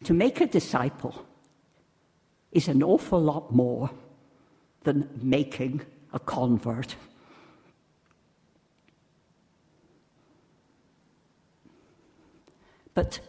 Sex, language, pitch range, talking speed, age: female, English, 125-160 Hz, 65 wpm, 60-79